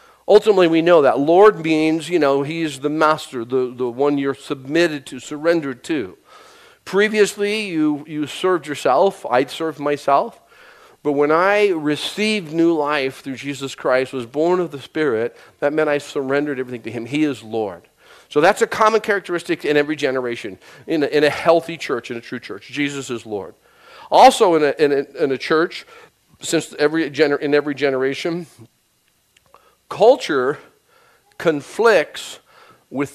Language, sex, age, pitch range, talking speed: English, male, 40-59, 140-185 Hz, 165 wpm